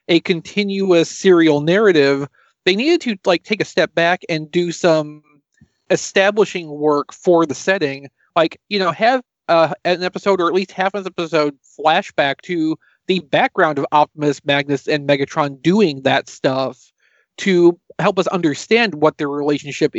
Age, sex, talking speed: 40-59, male, 160 wpm